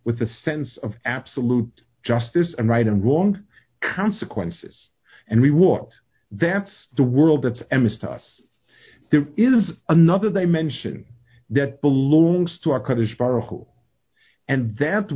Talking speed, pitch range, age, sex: 125 wpm, 120-165 Hz, 50-69, male